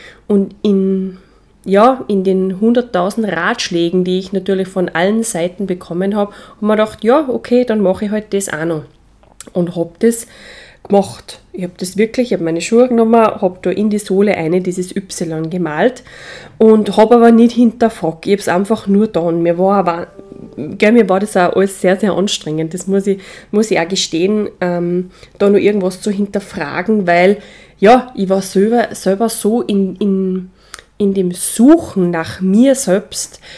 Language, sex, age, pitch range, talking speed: German, female, 20-39, 180-220 Hz, 175 wpm